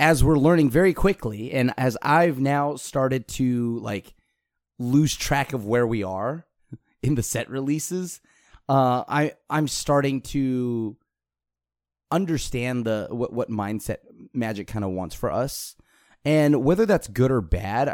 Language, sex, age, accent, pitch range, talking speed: English, male, 30-49, American, 110-150 Hz, 145 wpm